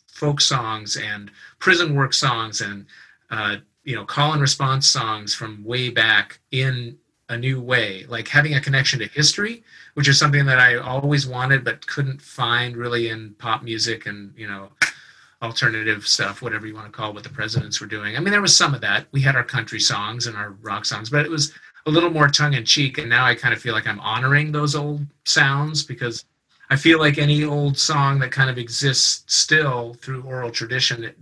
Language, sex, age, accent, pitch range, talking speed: English, male, 30-49, American, 115-145 Hz, 210 wpm